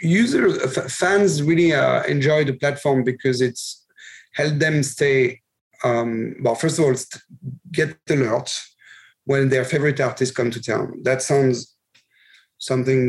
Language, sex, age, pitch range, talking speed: English, male, 40-59, 125-155 Hz, 140 wpm